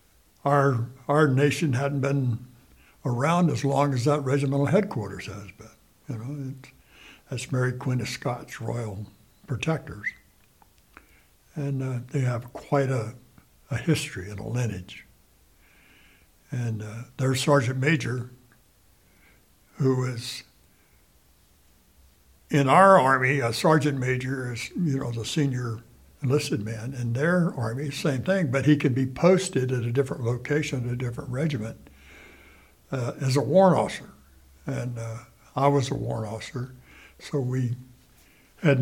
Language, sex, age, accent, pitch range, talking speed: English, male, 60-79, American, 115-145 Hz, 135 wpm